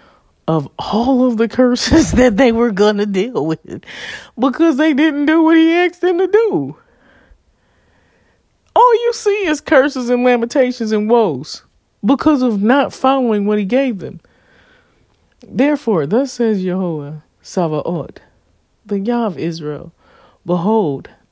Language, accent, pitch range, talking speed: English, American, 165-240 Hz, 135 wpm